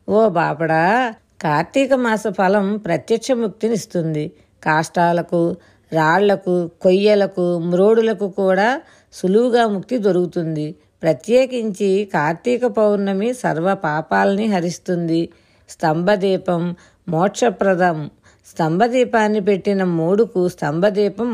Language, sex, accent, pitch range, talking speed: Telugu, female, native, 170-220 Hz, 75 wpm